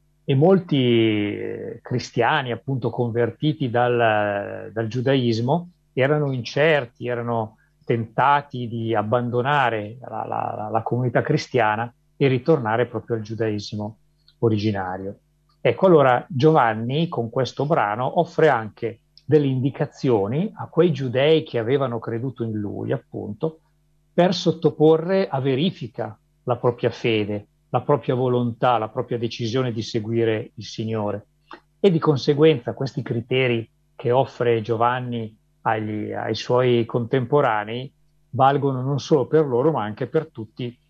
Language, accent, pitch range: Italian, native, 115-150 Hz